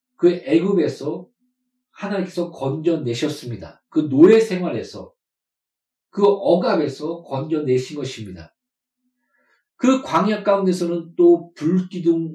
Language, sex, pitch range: Korean, male, 160-245 Hz